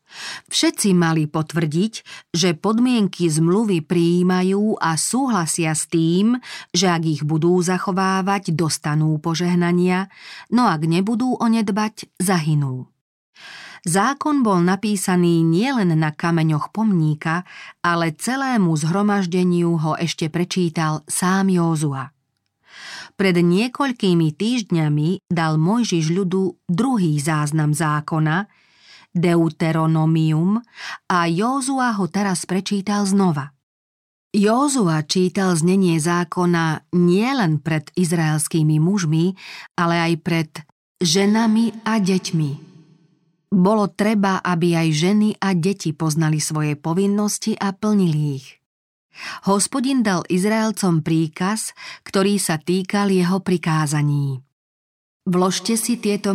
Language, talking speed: Slovak, 100 wpm